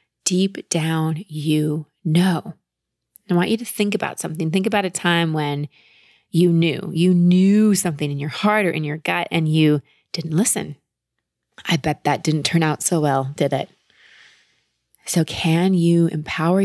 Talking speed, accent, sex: 165 wpm, American, female